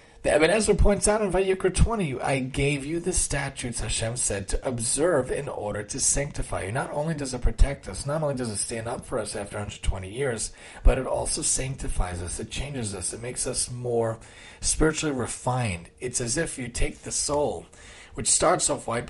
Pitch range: 110-145 Hz